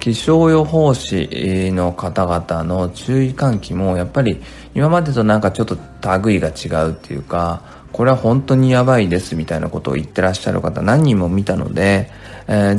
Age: 20-39